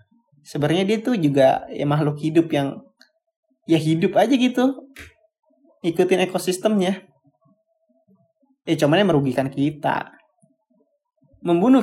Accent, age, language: native, 20-39, Indonesian